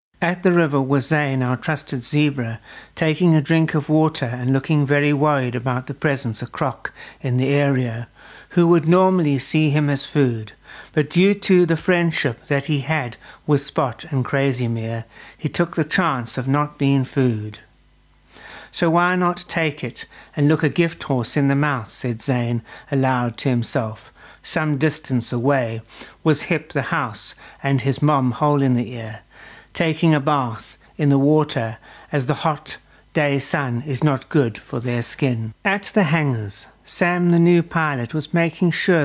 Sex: male